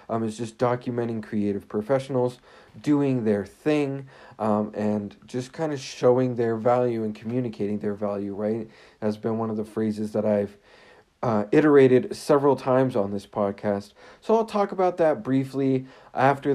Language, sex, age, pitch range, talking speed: English, male, 40-59, 105-130 Hz, 160 wpm